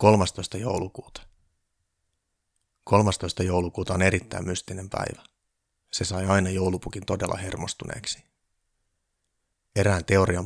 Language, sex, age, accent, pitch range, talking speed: Finnish, male, 30-49, native, 90-100 Hz, 90 wpm